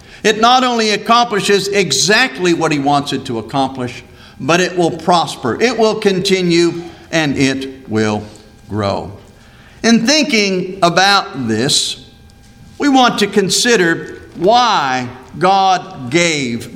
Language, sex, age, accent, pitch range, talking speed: English, male, 50-69, American, 175-235 Hz, 120 wpm